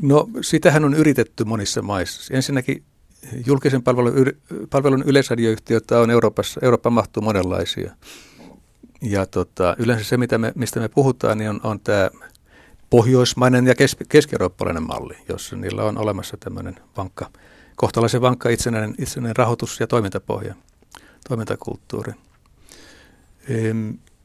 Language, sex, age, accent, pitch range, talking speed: Finnish, male, 60-79, native, 110-135 Hz, 120 wpm